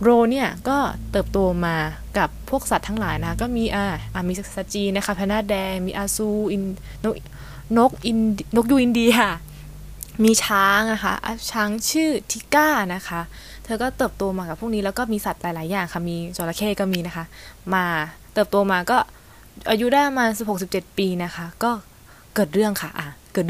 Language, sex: Thai, female